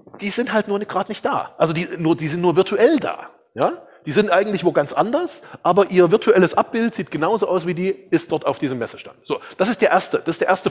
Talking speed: 250 wpm